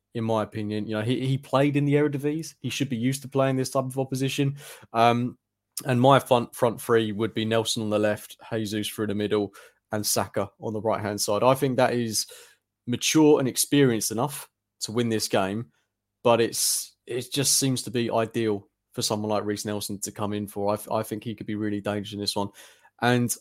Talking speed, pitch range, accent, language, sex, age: 220 wpm, 105-125 Hz, British, English, male, 20-39